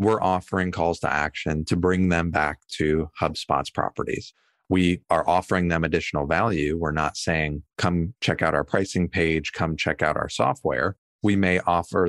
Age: 30-49